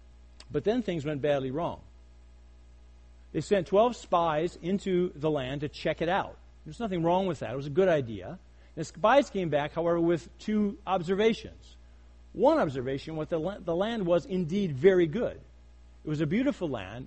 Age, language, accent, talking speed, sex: 50-69, English, American, 175 wpm, male